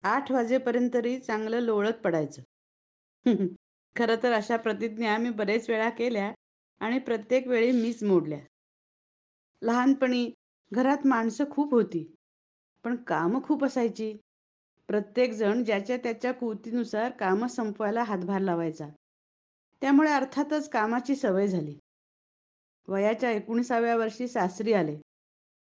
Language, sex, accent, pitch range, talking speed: Marathi, female, native, 200-245 Hz, 105 wpm